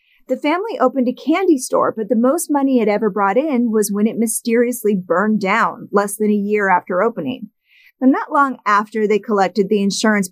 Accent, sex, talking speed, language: American, female, 200 wpm, English